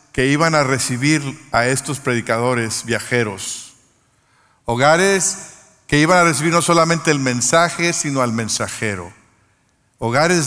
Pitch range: 120-170 Hz